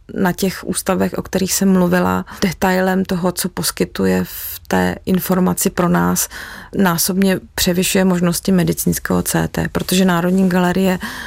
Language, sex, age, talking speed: Czech, female, 30-49, 130 wpm